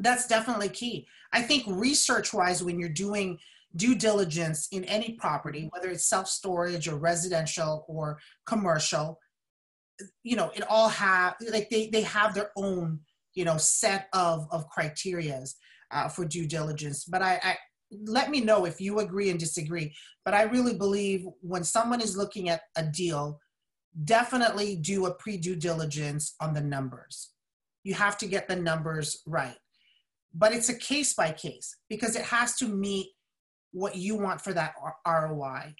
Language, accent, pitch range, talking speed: English, American, 160-205 Hz, 165 wpm